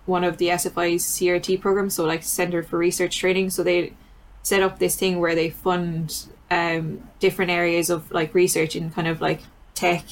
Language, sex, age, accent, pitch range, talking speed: English, female, 10-29, Irish, 165-185 Hz, 190 wpm